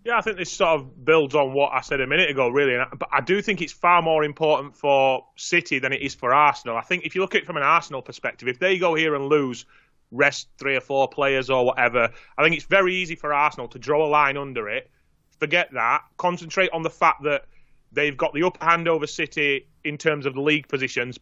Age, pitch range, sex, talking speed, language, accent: 30-49, 130-160 Hz, male, 245 wpm, English, British